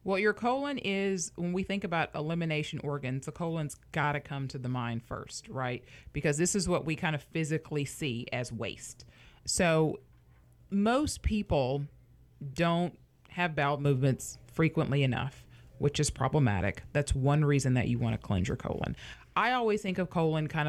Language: English